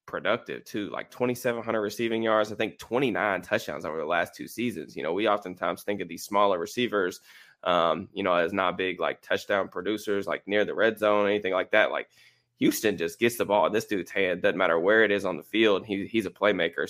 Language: English